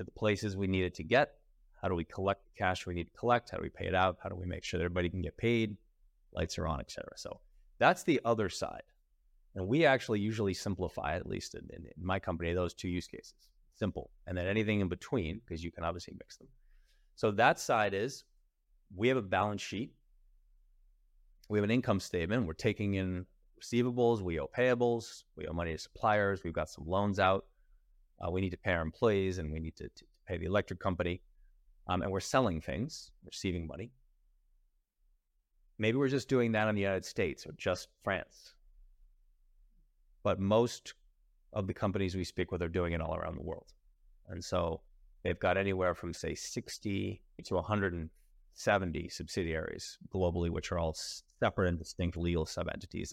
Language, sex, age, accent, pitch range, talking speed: English, male, 30-49, American, 85-105 Hz, 190 wpm